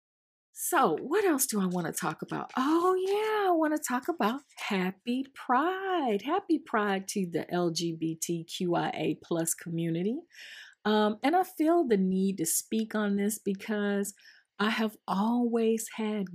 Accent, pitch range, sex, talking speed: American, 175-260 Hz, female, 145 wpm